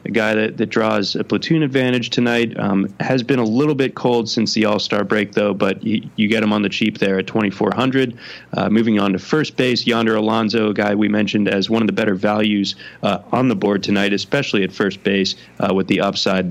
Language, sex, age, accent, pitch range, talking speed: English, male, 20-39, American, 100-120 Hz, 225 wpm